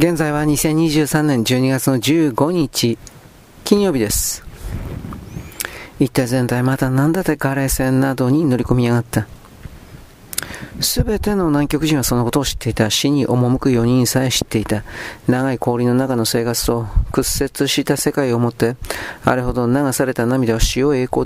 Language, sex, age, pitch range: Japanese, male, 40-59, 115-135 Hz